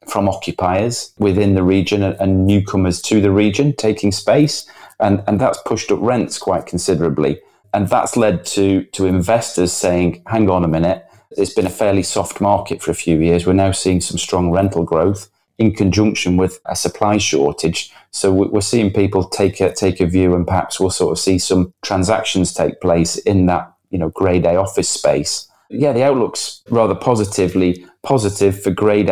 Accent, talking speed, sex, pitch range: British, 185 wpm, male, 90-100 Hz